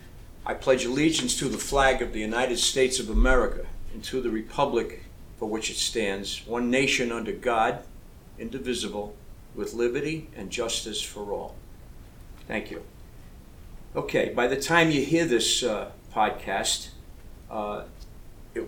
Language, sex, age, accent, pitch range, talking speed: English, male, 50-69, American, 105-130 Hz, 140 wpm